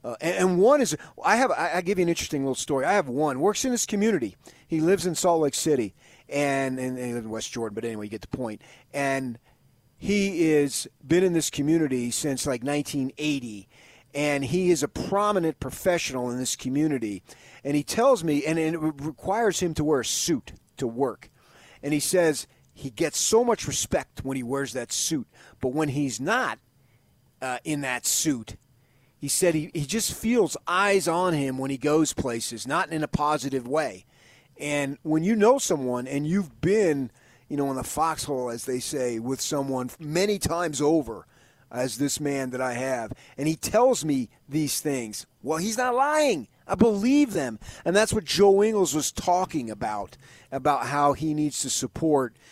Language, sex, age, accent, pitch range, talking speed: English, male, 40-59, American, 130-165 Hz, 190 wpm